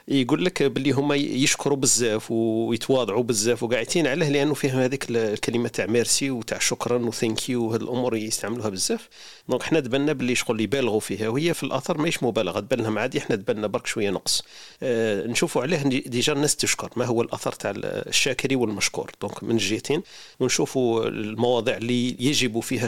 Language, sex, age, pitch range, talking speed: Arabic, male, 40-59, 115-140 Hz, 165 wpm